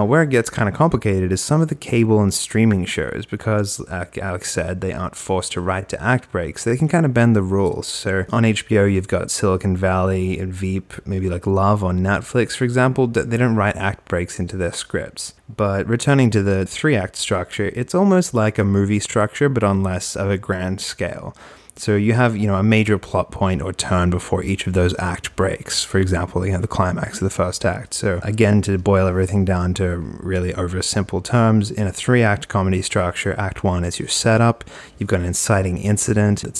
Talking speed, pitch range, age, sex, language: 215 wpm, 95-105 Hz, 20-39, male, English